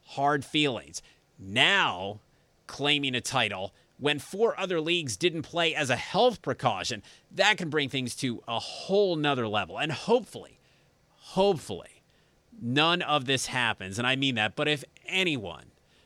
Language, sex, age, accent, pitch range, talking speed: English, male, 30-49, American, 120-160 Hz, 145 wpm